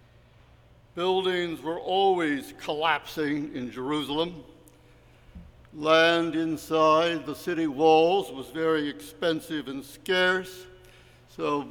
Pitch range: 140-175 Hz